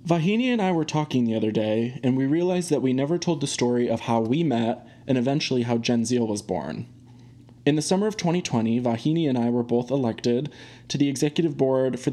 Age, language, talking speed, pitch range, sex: 20-39, English, 220 wpm, 120-150 Hz, male